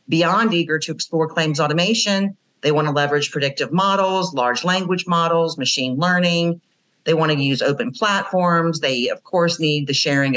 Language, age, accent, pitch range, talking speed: English, 50-69, American, 145-180 Hz, 155 wpm